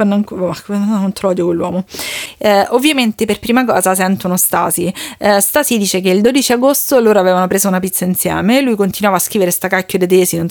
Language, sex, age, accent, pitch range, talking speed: Italian, female, 30-49, native, 185-235 Hz, 185 wpm